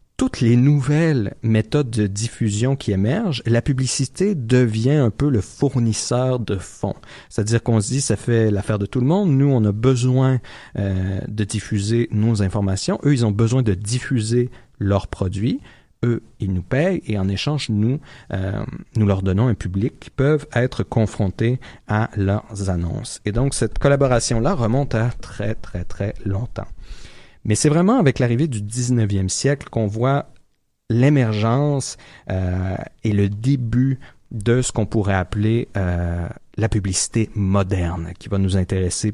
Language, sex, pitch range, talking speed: French, male, 105-135 Hz, 160 wpm